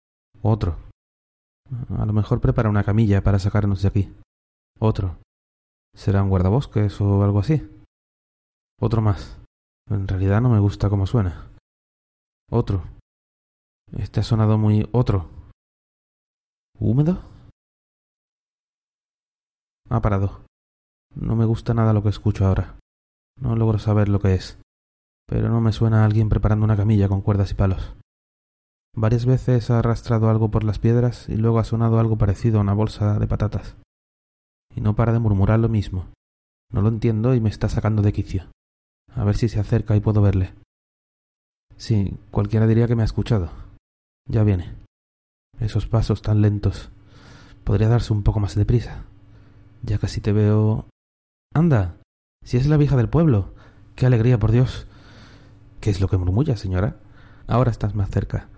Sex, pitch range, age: male, 95-110 Hz, 30-49